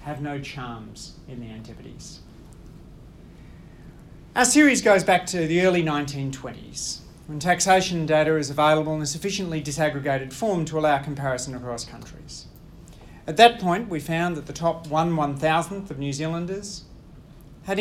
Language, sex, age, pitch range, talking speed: English, male, 40-59, 145-185 Hz, 145 wpm